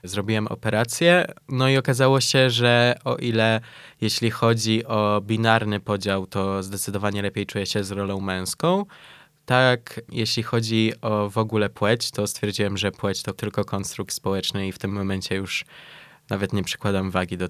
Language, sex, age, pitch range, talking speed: Polish, male, 20-39, 100-120 Hz, 160 wpm